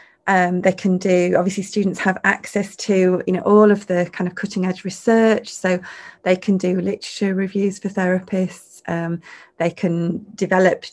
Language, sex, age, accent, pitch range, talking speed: English, female, 30-49, British, 185-210 Hz, 170 wpm